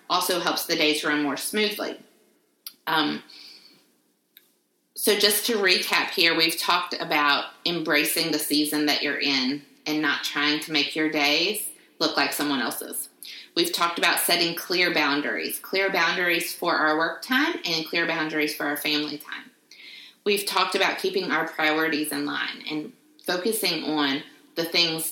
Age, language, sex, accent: 30-49, English, female, American